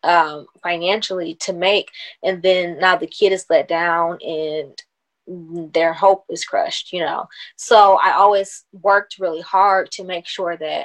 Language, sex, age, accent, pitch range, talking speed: English, female, 20-39, American, 175-200 Hz, 160 wpm